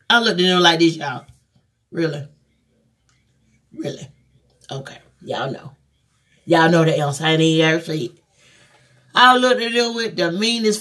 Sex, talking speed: female, 160 wpm